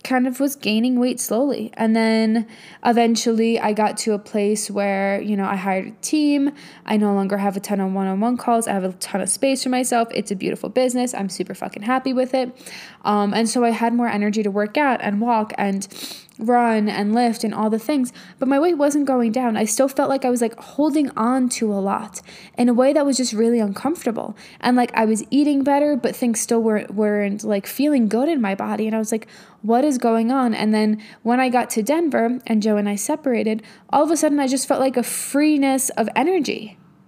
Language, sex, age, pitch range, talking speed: English, female, 10-29, 210-255 Hz, 235 wpm